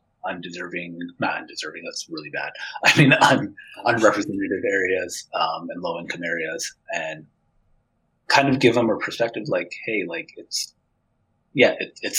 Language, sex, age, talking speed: English, male, 30-49, 140 wpm